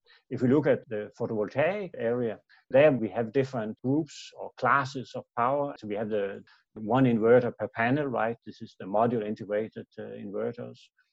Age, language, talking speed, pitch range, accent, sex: 60-79, English, 175 wpm, 105-125 Hz, Danish, male